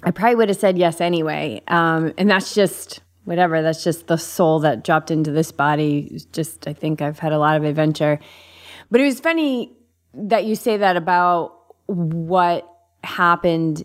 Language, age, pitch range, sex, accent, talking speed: English, 30-49, 150-180 Hz, female, American, 180 wpm